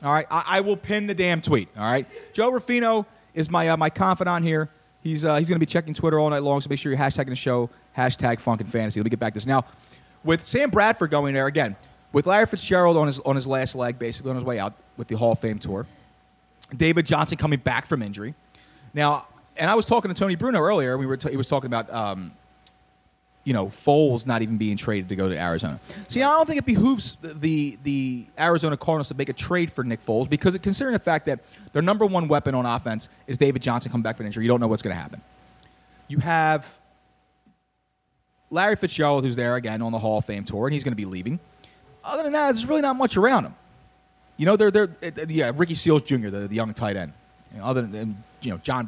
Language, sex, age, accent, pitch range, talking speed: English, male, 30-49, American, 120-170 Hz, 245 wpm